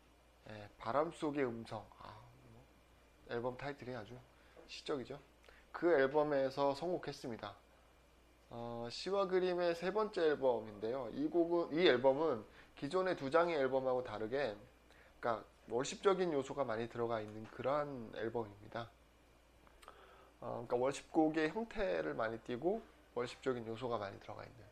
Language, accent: Korean, native